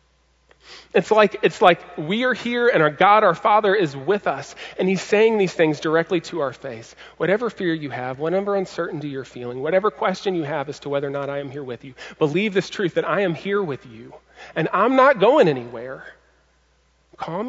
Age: 40-59